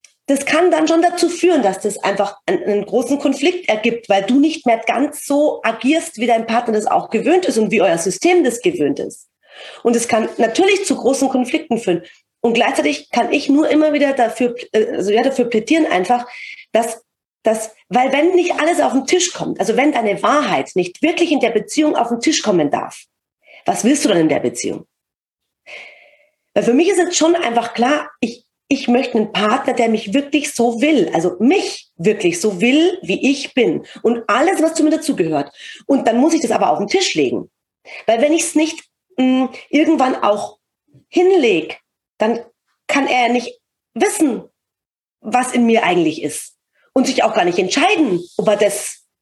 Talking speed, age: 190 wpm, 40-59